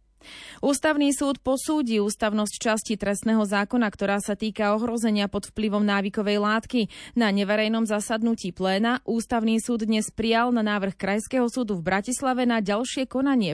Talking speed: 140 wpm